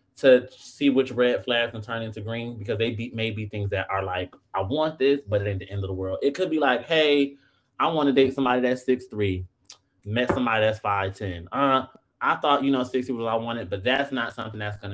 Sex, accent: male, American